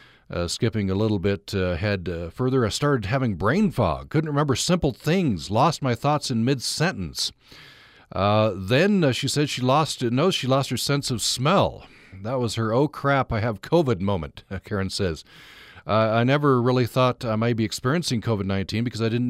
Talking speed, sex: 190 wpm, male